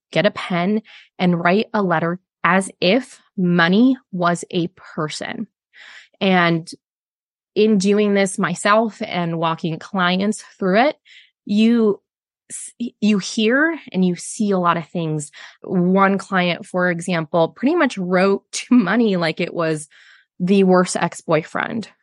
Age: 20-39